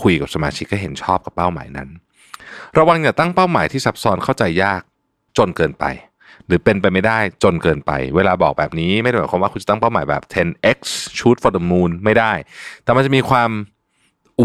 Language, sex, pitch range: Thai, male, 85-120 Hz